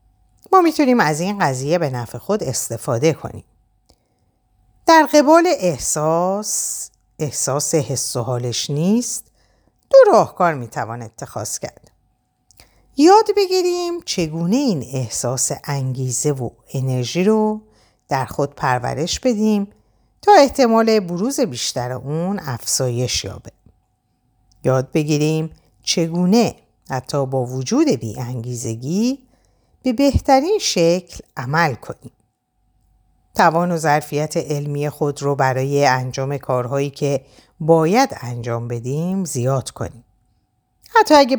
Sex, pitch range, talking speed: female, 120-205 Hz, 105 wpm